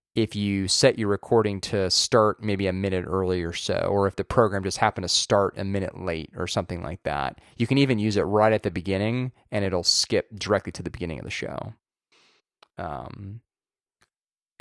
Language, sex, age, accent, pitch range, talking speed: English, male, 20-39, American, 90-110 Hz, 195 wpm